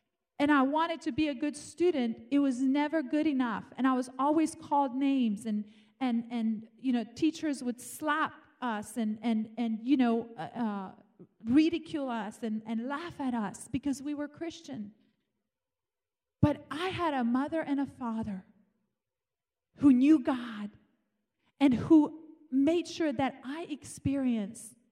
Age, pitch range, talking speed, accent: 40-59, 245-310 Hz, 150 wpm, American